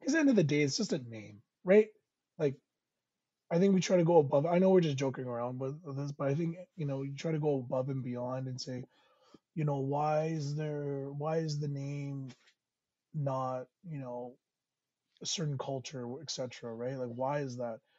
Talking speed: 210 wpm